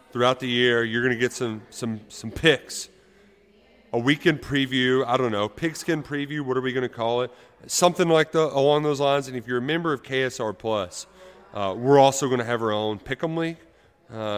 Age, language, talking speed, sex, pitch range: 30-49, English, 210 wpm, male, 110-135 Hz